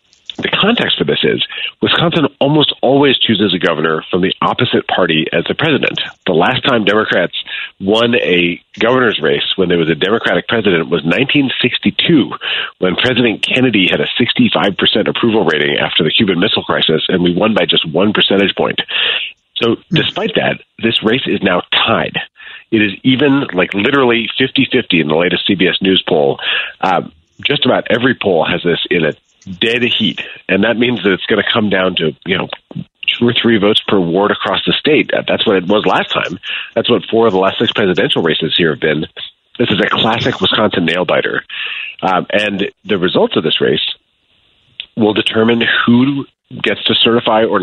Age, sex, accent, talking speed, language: 40-59, male, American, 185 wpm, English